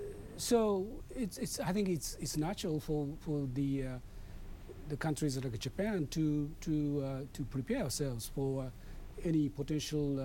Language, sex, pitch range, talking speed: English, male, 130-170 Hz, 160 wpm